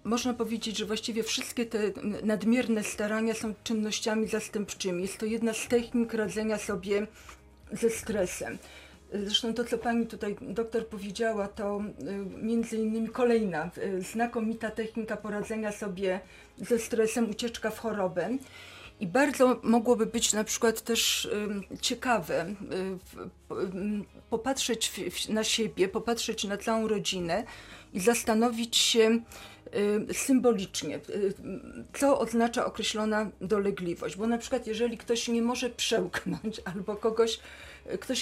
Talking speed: 115 wpm